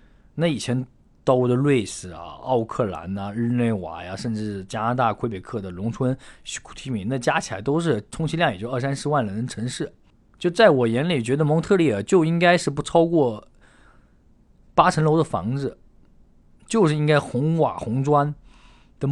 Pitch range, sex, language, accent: 100-150 Hz, male, Chinese, native